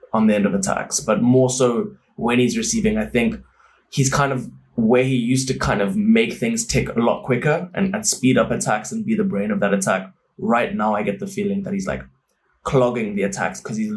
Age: 20-39